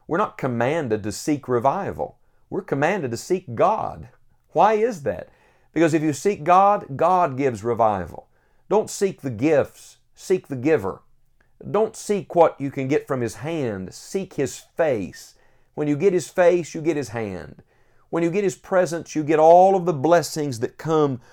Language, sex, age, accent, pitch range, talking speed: English, male, 50-69, American, 110-155 Hz, 175 wpm